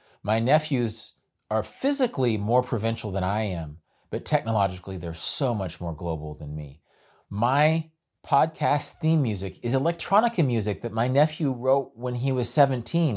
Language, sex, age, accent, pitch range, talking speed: English, male, 30-49, American, 95-145 Hz, 150 wpm